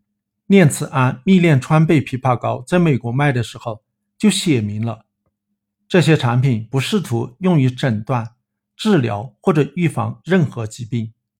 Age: 50-69